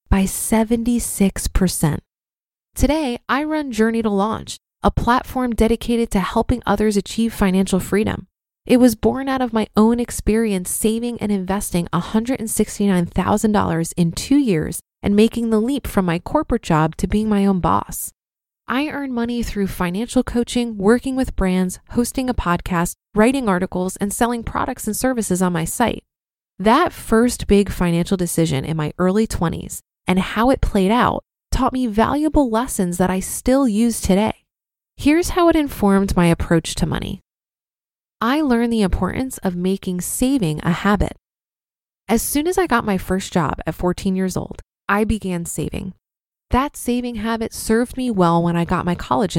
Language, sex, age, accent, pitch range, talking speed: English, female, 20-39, American, 185-240 Hz, 160 wpm